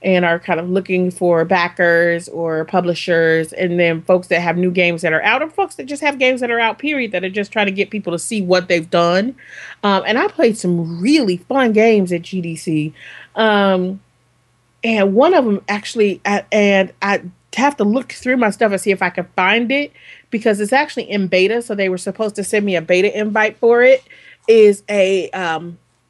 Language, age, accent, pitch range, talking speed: English, 30-49, American, 175-220 Hz, 210 wpm